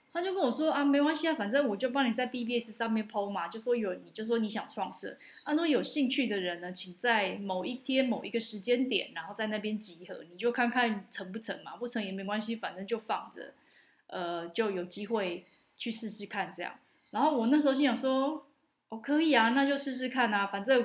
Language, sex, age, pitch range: Chinese, female, 20-39, 200-255 Hz